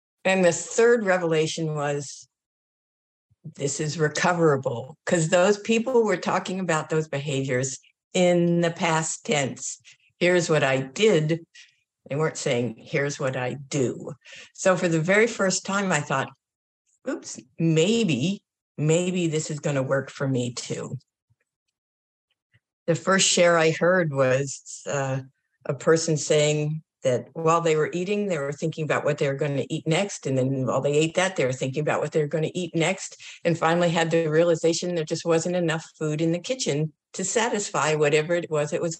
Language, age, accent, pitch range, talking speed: English, 60-79, American, 150-185 Hz, 175 wpm